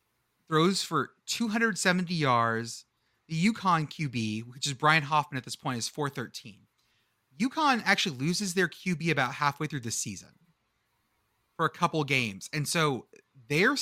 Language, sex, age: English, male, 30-49